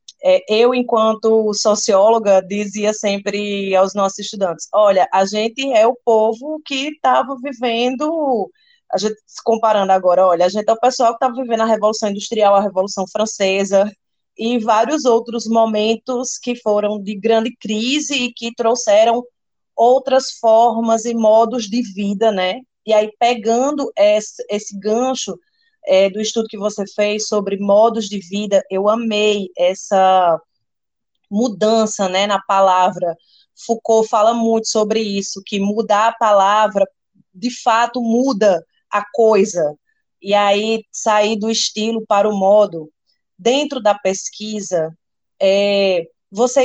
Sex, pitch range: female, 200-240 Hz